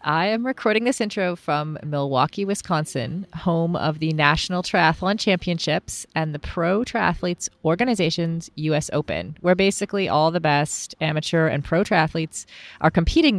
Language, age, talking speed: English, 30-49, 145 wpm